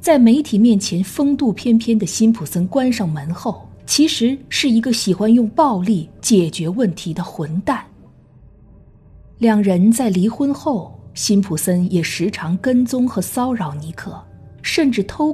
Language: Chinese